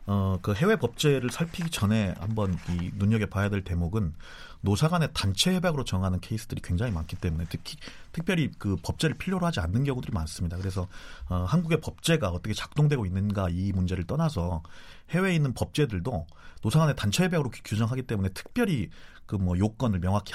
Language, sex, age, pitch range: Korean, male, 30-49, 95-135 Hz